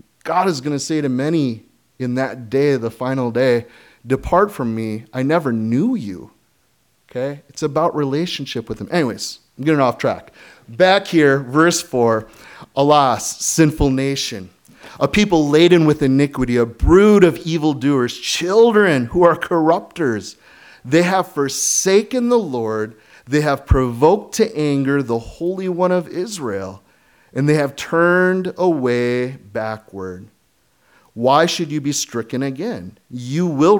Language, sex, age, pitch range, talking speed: English, male, 30-49, 120-165 Hz, 140 wpm